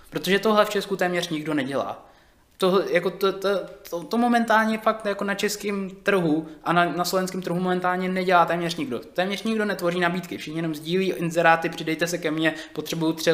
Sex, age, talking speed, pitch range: male, 20-39, 190 wpm, 165-195 Hz